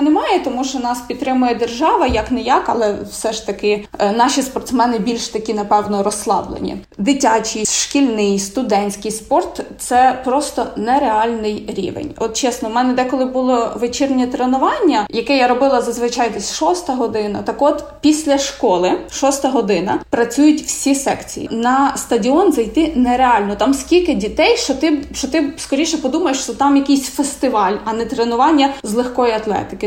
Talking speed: 145 wpm